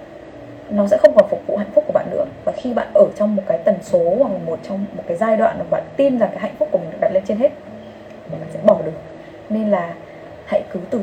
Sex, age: female, 20-39